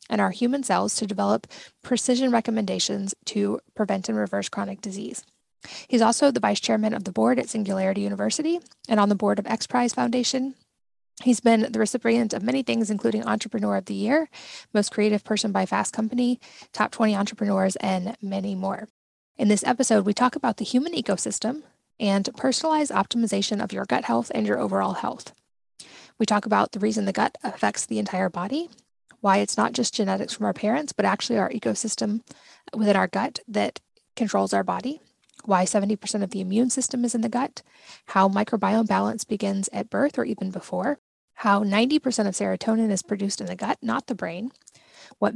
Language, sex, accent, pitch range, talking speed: English, female, American, 200-245 Hz, 185 wpm